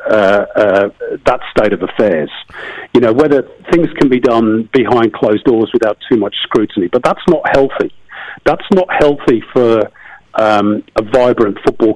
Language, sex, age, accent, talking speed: English, male, 50-69, British, 160 wpm